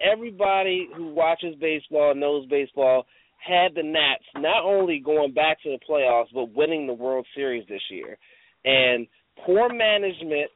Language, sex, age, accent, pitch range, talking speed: English, male, 30-49, American, 140-205 Hz, 150 wpm